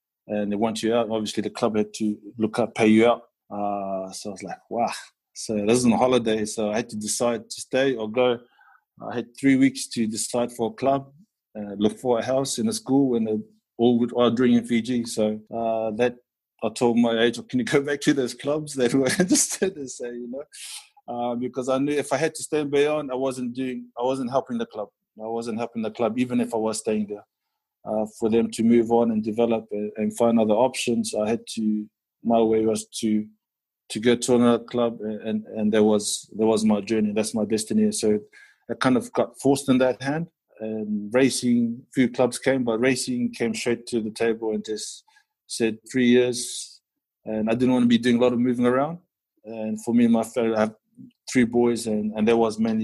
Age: 20-39